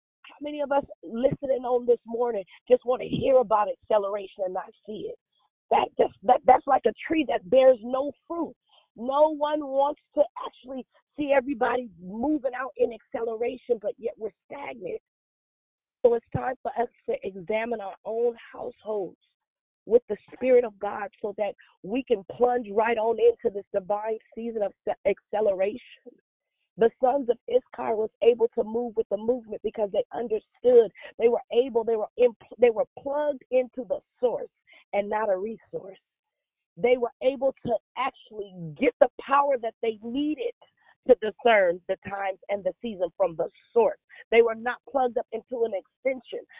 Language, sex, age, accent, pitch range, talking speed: English, female, 40-59, American, 210-280 Hz, 170 wpm